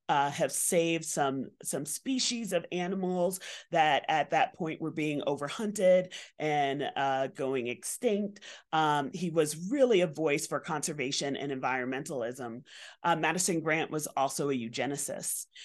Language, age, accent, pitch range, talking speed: English, 30-49, American, 150-200 Hz, 140 wpm